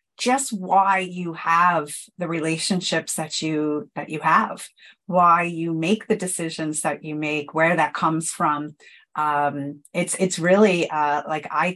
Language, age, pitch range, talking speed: English, 30-49, 160-195 Hz, 155 wpm